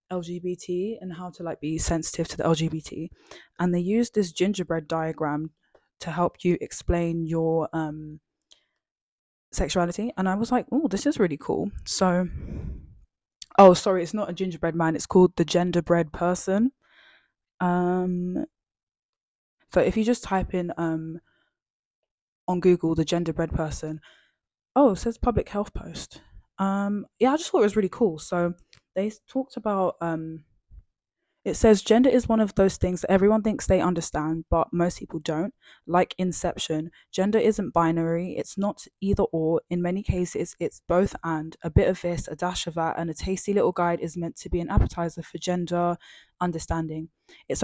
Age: 10-29